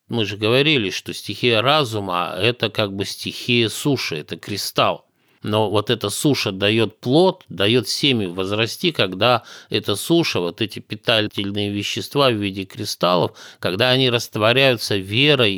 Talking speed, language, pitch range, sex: 145 wpm, Russian, 105-130 Hz, male